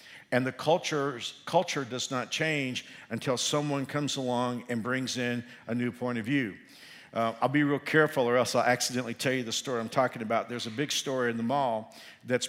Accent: American